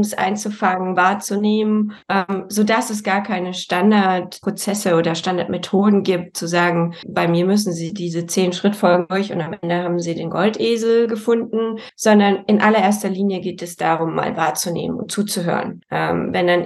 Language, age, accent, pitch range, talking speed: German, 20-39, German, 180-215 Hz, 155 wpm